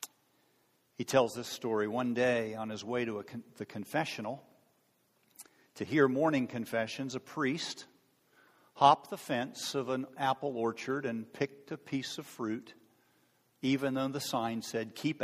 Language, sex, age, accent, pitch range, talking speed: English, male, 50-69, American, 115-140 Hz, 145 wpm